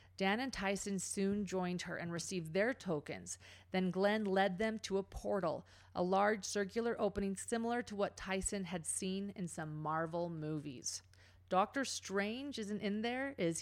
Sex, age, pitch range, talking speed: female, 40-59, 175-215 Hz, 165 wpm